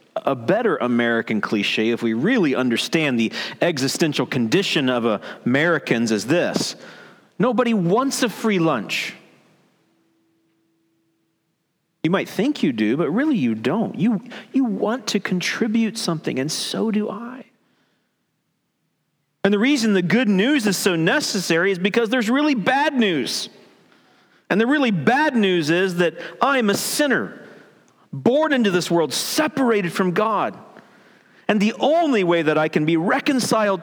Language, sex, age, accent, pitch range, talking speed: English, male, 40-59, American, 165-235 Hz, 140 wpm